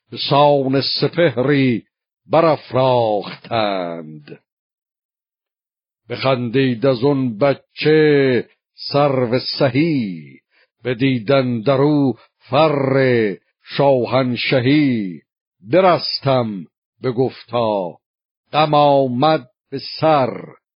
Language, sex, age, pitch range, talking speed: Persian, male, 60-79, 125-145 Hz, 65 wpm